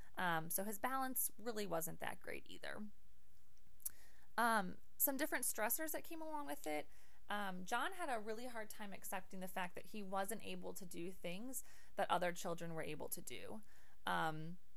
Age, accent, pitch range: 20-39, American, 165-215 Hz